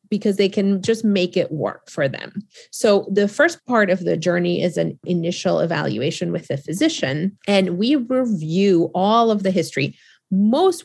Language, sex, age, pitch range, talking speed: English, female, 30-49, 175-215 Hz, 170 wpm